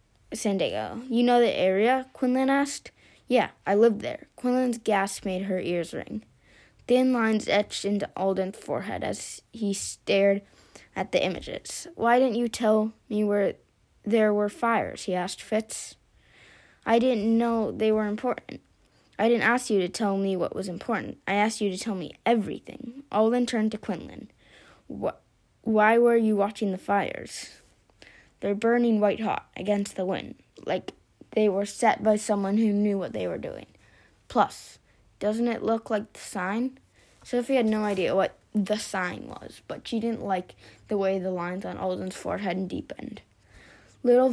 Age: 10-29